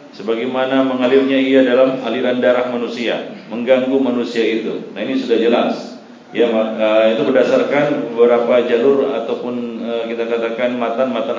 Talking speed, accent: 120 wpm, native